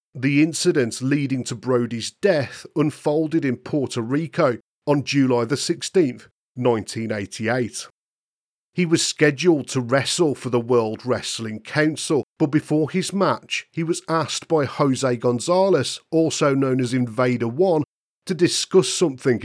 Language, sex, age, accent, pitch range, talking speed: English, male, 40-59, British, 125-160 Hz, 130 wpm